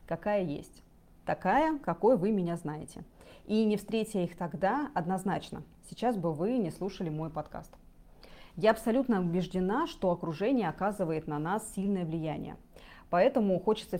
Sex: female